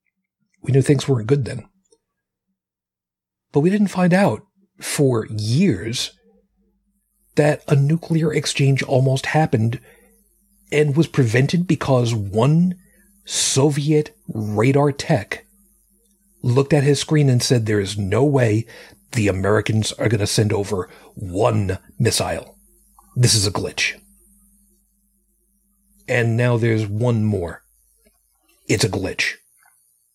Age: 40-59